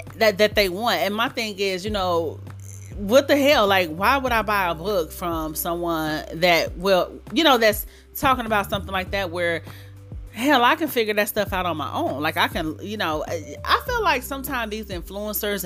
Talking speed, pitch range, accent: 205 wpm, 170-240 Hz, American